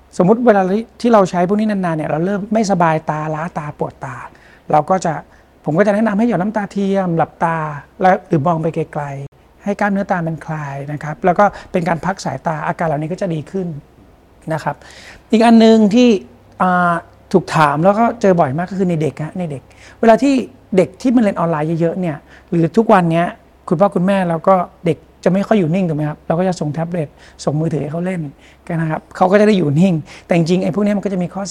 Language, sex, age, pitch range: Thai, male, 60-79, 155-190 Hz